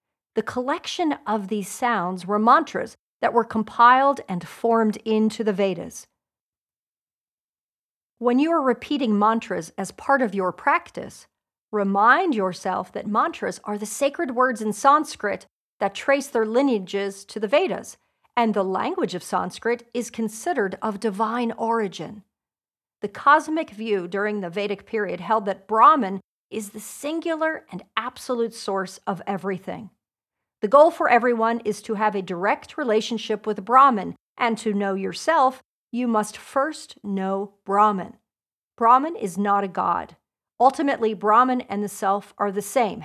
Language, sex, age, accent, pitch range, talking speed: English, female, 50-69, American, 205-250 Hz, 145 wpm